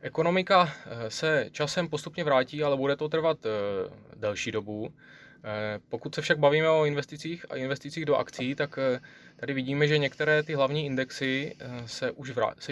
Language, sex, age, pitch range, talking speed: Czech, male, 20-39, 120-155 Hz, 140 wpm